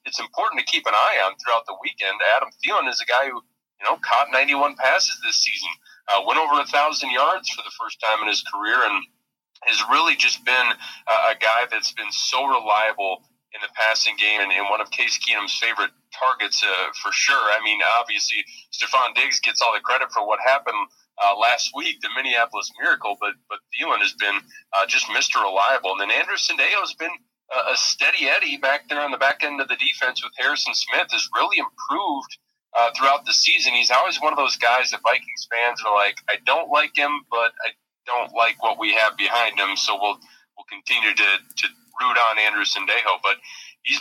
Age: 30-49